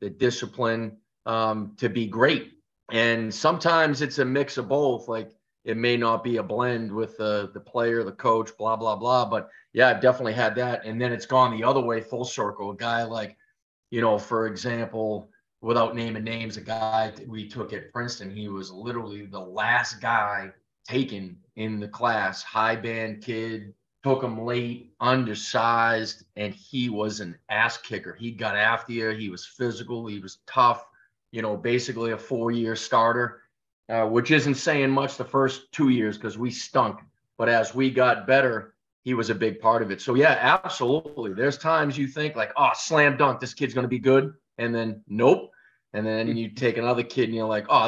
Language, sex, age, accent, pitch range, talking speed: English, male, 30-49, American, 110-130 Hz, 195 wpm